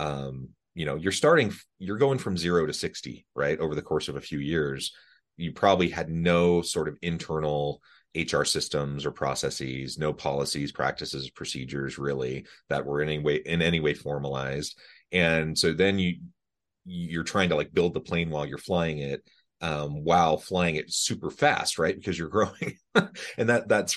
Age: 30-49